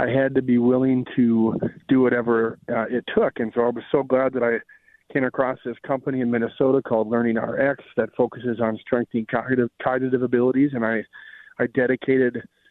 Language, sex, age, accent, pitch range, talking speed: English, male, 40-59, American, 115-135 Hz, 185 wpm